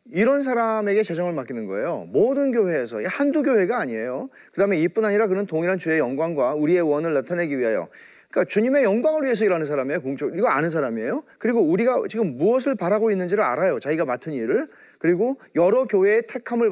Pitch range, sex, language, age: 180-260 Hz, male, Korean, 40-59